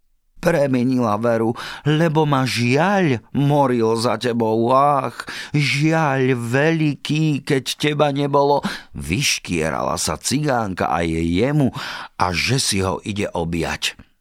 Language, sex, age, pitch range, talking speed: Slovak, male, 50-69, 85-120 Hz, 110 wpm